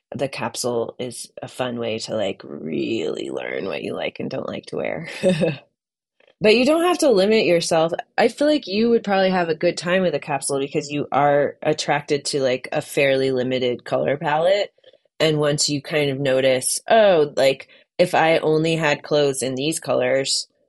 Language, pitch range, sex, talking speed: English, 135-170 Hz, female, 190 wpm